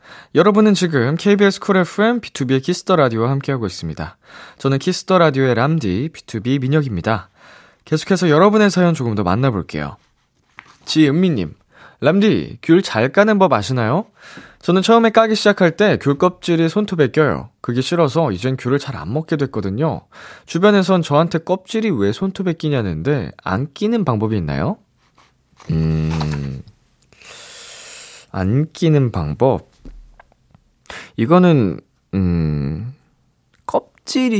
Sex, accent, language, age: male, native, Korean, 20-39